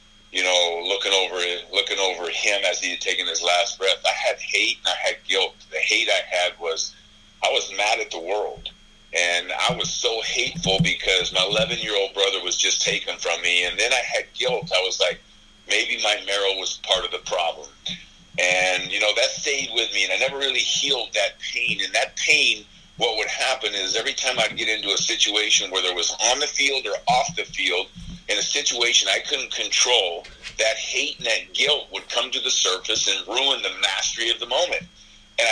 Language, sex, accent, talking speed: English, male, American, 210 wpm